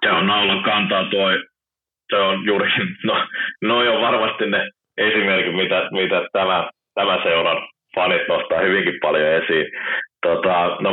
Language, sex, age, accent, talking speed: Finnish, male, 30-49, native, 120 wpm